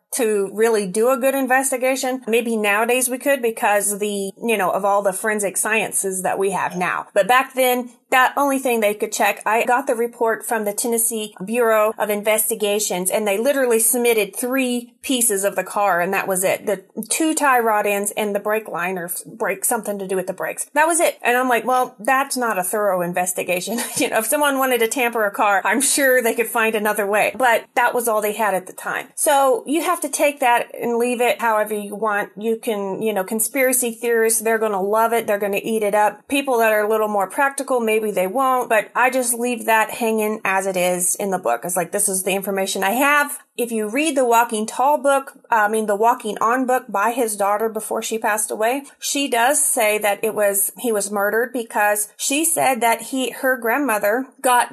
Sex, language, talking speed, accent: female, English, 225 wpm, American